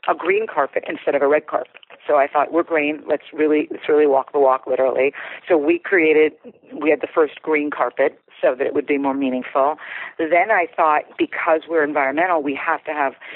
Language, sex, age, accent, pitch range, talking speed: English, female, 50-69, American, 145-175 Hz, 210 wpm